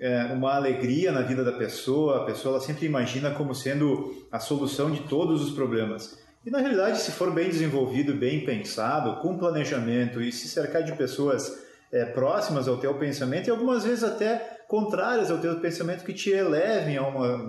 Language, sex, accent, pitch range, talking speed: Portuguese, male, Brazilian, 130-160 Hz, 185 wpm